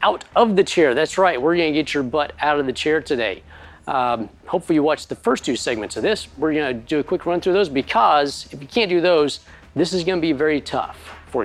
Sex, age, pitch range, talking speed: male, 40-59, 120-175 Hz, 245 wpm